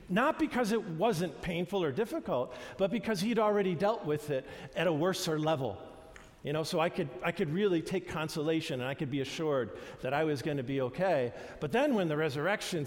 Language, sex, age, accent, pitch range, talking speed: English, male, 50-69, American, 140-190 Hz, 210 wpm